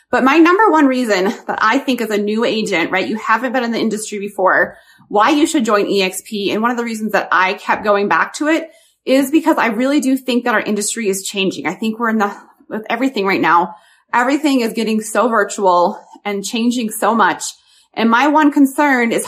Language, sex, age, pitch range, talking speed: English, female, 30-49, 205-265 Hz, 220 wpm